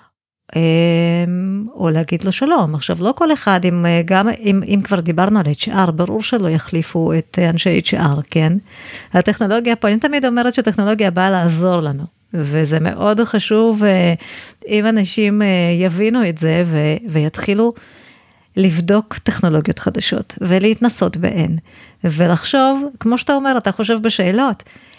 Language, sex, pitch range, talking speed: Hebrew, female, 175-230 Hz, 130 wpm